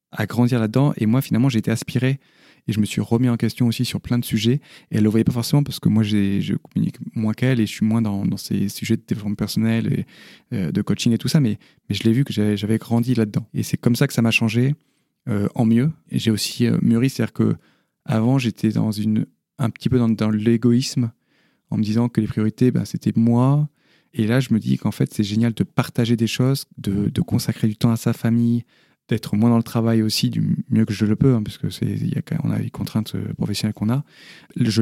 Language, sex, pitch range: French, male, 110-125 Hz